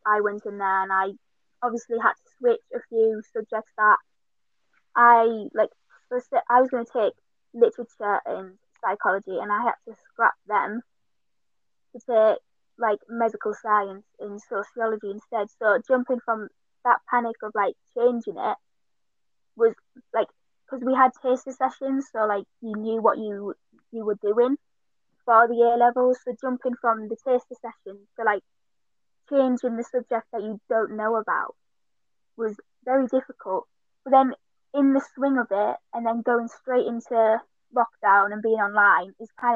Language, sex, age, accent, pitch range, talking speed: English, female, 20-39, British, 215-250 Hz, 155 wpm